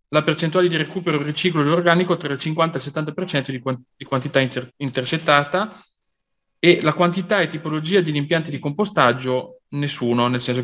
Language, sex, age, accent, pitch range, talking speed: Italian, male, 30-49, native, 130-165 Hz, 160 wpm